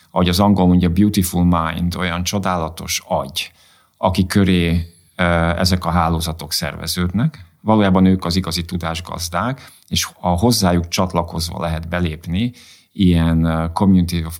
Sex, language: male, Hungarian